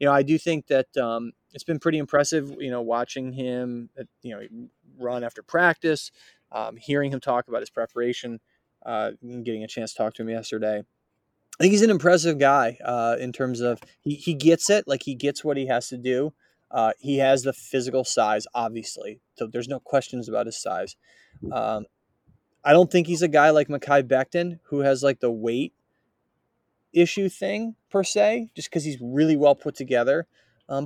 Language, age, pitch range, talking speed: English, 20-39, 125-165 Hz, 195 wpm